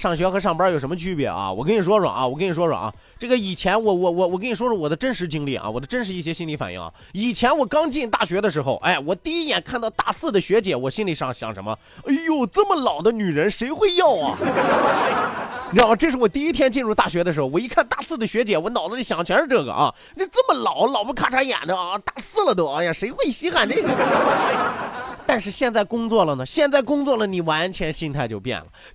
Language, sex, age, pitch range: Chinese, male, 30-49, 165-260 Hz